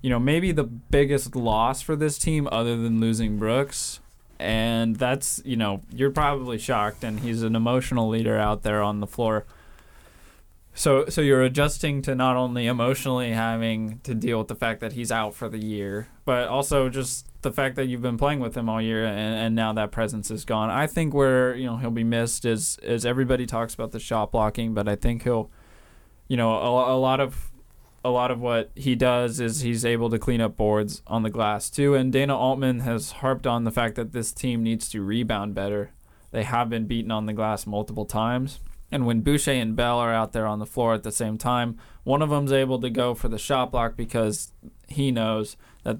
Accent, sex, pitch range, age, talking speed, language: American, male, 110-130 Hz, 20-39, 215 wpm, English